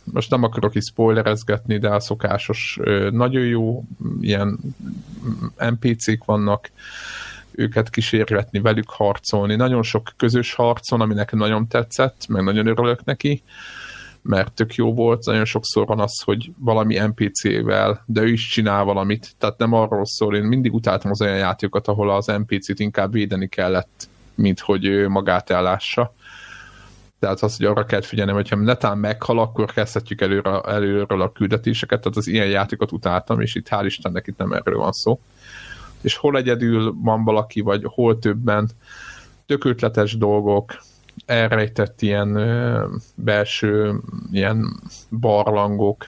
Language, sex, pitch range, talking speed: Hungarian, male, 100-115 Hz, 140 wpm